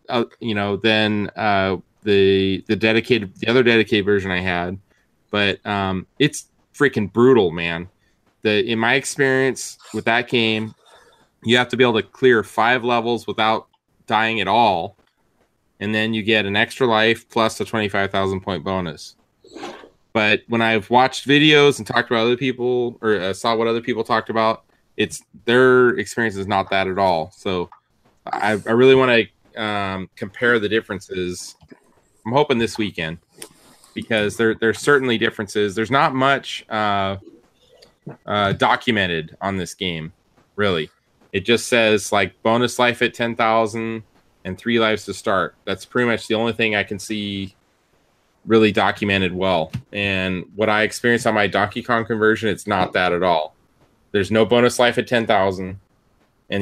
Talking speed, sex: 165 wpm, male